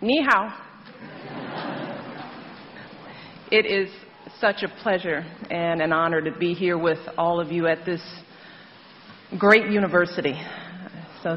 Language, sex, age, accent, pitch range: Chinese, female, 40-59, American, 155-190 Hz